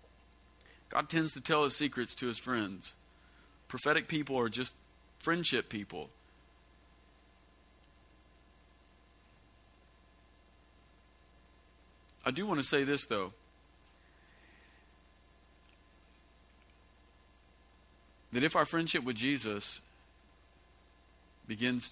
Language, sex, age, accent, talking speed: English, male, 50-69, American, 80 wpm